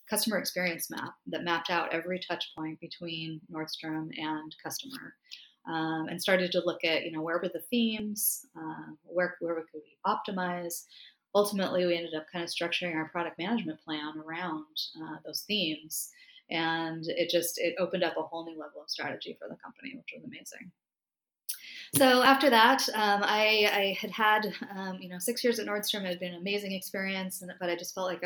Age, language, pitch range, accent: 30-49, English, 165-200 Hz, American